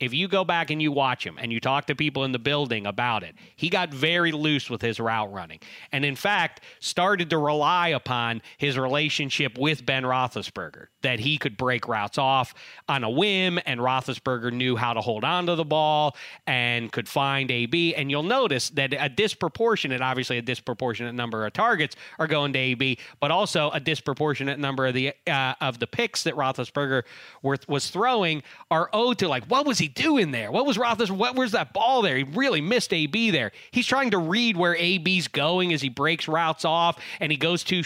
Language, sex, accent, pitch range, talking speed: English, male, American, 125-170 Hz, 205 wpm